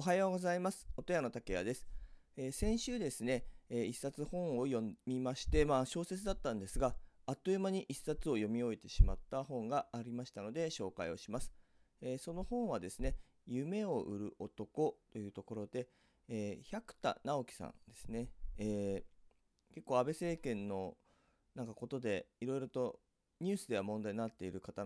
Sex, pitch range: male, 100-145 Hz